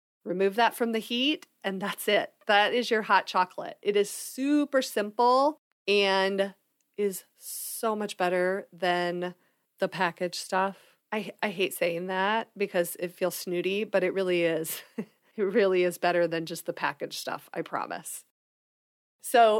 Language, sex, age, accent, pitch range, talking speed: English, female, 30-49, American, 180-225 Hz, 155 wpm